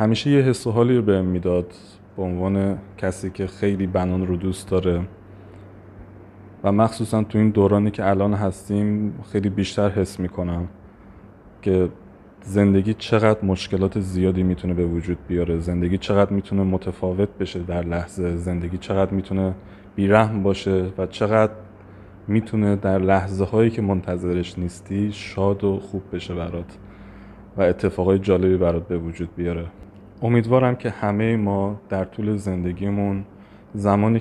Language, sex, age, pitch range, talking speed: Persian, male, 20-39, 90-105 Hz, 135 wpm